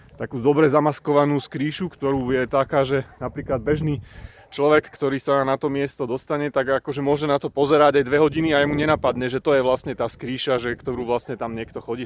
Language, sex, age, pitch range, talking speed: Slovak, male, 30-49, 125-145 Hz, 210 wpm